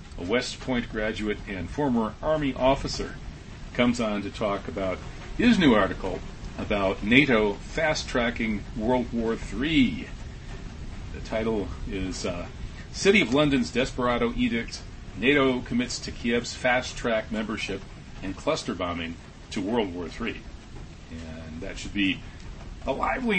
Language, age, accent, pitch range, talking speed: English, 40-59, American, 95-125 Hz, 130 wpm